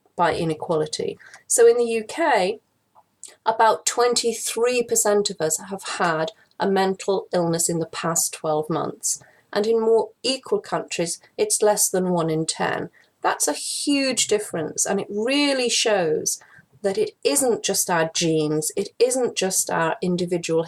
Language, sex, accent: English, female, British